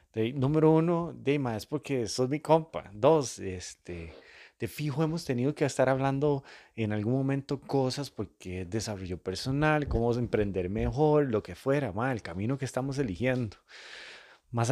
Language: Spanish